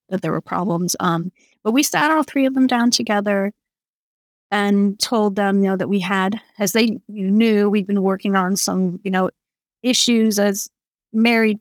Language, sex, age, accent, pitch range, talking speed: English, female, 30-49, American, 185-235 Hz, 180 wpm